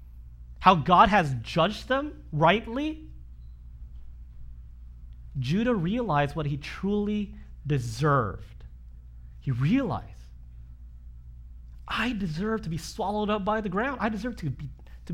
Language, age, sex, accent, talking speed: English, 40-59, male, American, 105 wpm